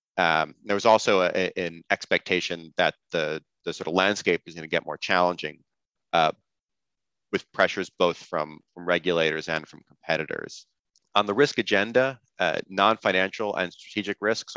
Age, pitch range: 30-49, 80-100 Hz